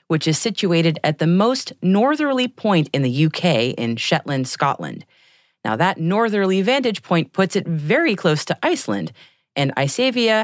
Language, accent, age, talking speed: English, American, 30-49, 155 wpm